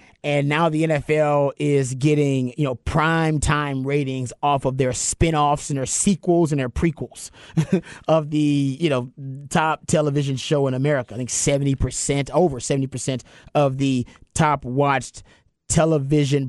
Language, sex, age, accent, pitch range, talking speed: English, male, 30-49, American, 135-155 Hz, 155 wpm